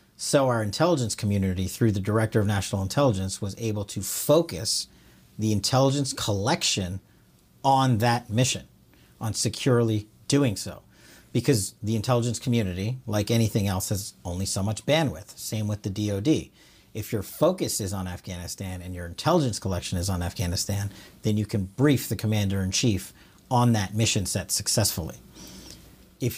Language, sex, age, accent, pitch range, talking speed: English, male, 40-59, American, 100-120 Hz, 150 wpm